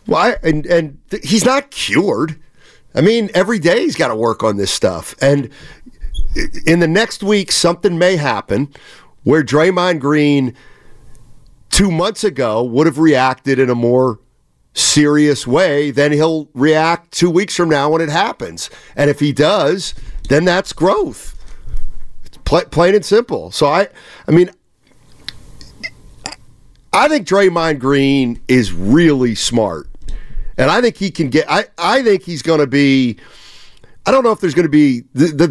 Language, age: English, 50-69